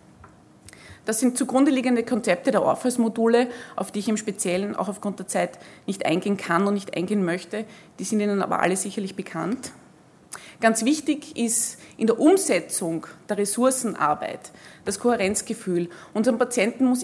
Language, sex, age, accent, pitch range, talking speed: German, female, 20-39, Austrian, 200-245 Hz, 150 wpm